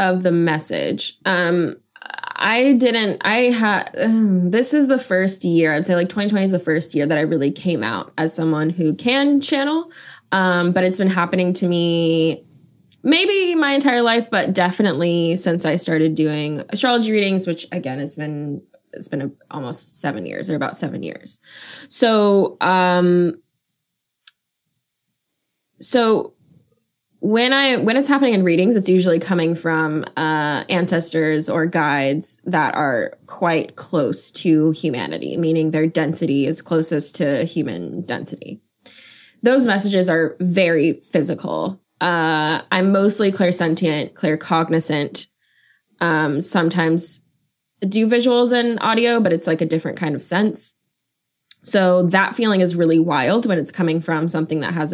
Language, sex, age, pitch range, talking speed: English, female, 20-39, 160-205 Hz, 145 wpm